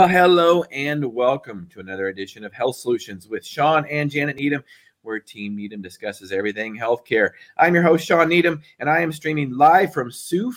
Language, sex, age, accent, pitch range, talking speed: English, male, 30-49, American, 110-155 Hz, 180 wpm